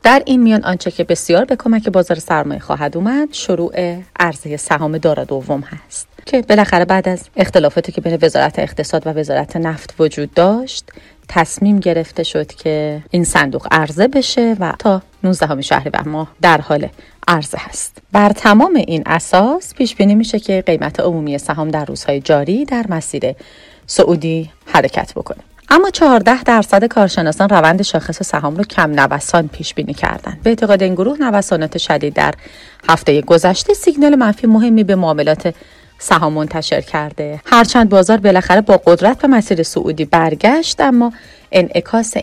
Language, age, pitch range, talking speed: Persian, 30-49, 160-215 Hz, 155 wpm